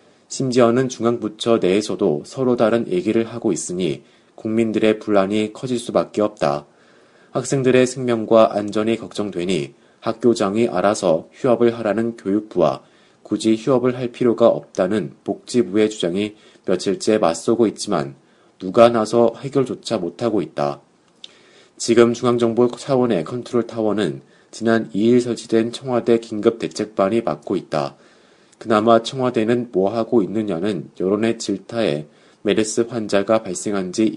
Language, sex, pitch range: Korean, male, 105-120 Hz